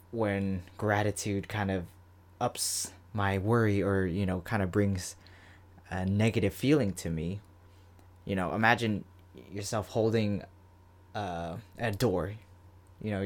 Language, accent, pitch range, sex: English, American, 90-115 Hz, male